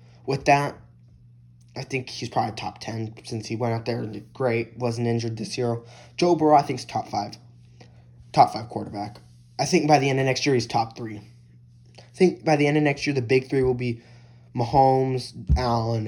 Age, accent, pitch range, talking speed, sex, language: 10-29, American, 95-135 Hz, 210 wpm, male, English